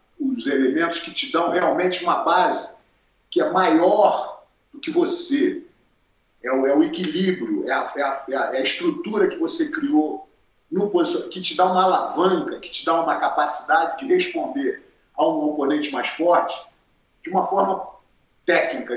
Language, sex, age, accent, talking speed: Portuguese, male, 40-59, Brazilian, 165 wpm